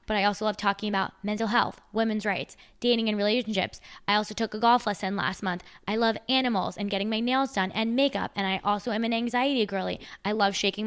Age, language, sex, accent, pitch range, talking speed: 20-39, English, female, American, 185-215 Hz, 225 wpm